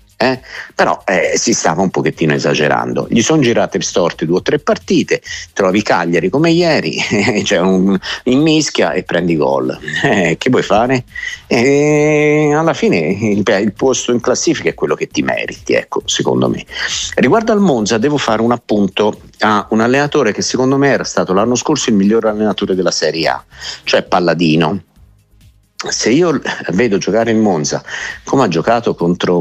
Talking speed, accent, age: 165 wpm, native, 50-69